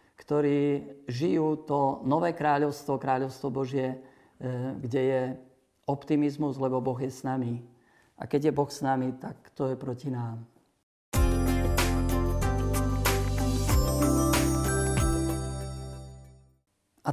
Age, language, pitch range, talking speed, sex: 50-69, Slovak, 115-140 Hz, 95 wpm, male